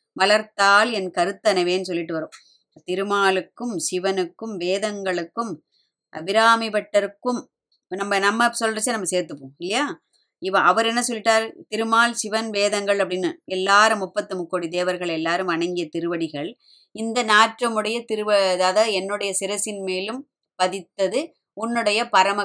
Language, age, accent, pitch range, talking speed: Tamil, 20-39, native, 185-220 Hz, 105 wpm